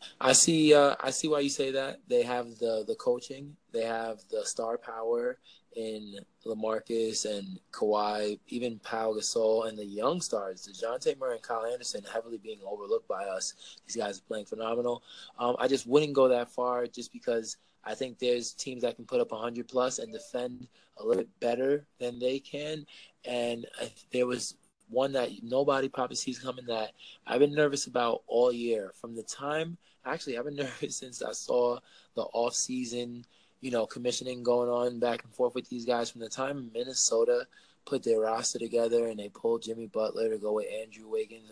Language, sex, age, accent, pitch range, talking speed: English, male, 20-39, American, 115-135 Hz, 185 wpm